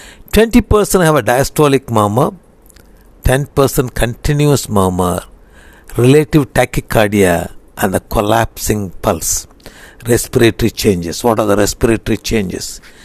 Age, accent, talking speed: 60-79, native, 90 wpm